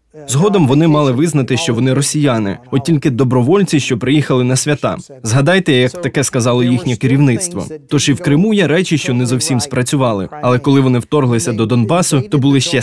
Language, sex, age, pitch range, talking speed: Ukrainian, male, 20-39, 125-155 Hz, 180 wpm